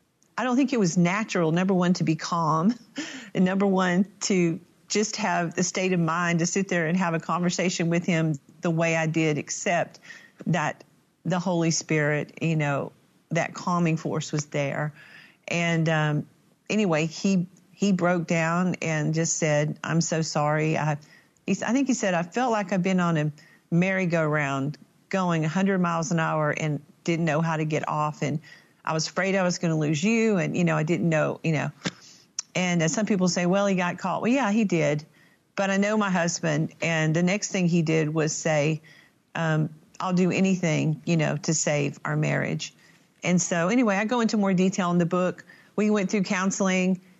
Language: English